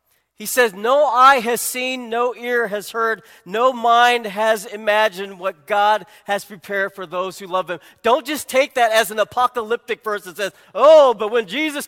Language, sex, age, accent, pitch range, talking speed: English, male, 40-59, American, 180-235 Hz, 185 wpm